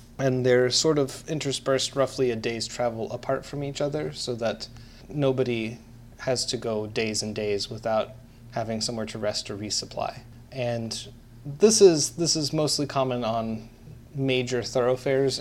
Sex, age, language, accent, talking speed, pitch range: male, 30-49, English, American, 150 wpm, 115-135 Hz